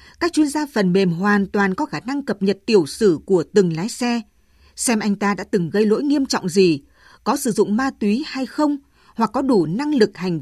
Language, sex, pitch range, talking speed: Vietnamese, female, 175-245 Hz, 235 wpm